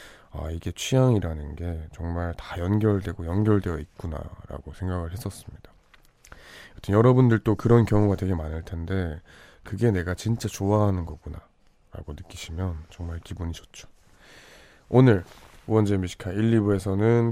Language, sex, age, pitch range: Korean, male, 20-39, 85-105 Hz